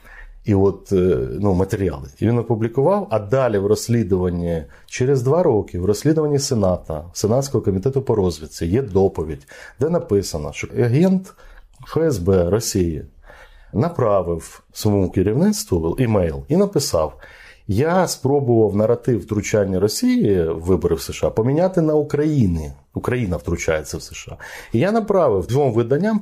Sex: male